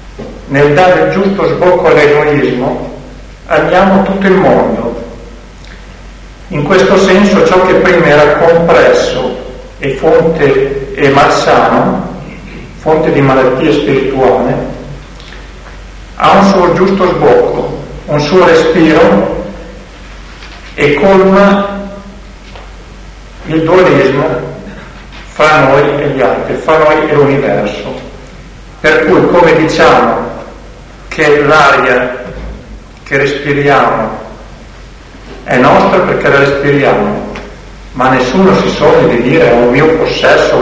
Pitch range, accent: 130-175 Hz, native